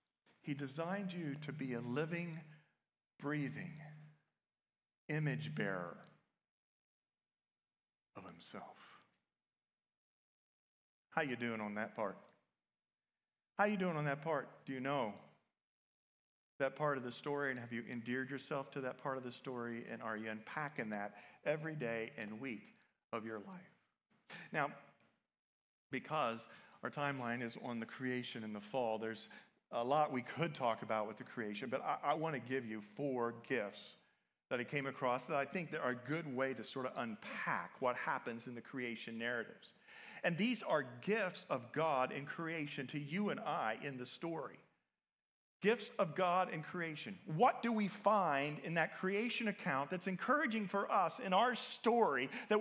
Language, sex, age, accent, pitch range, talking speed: English, male, 50-69, American, 120-185 Hz, 160 wpm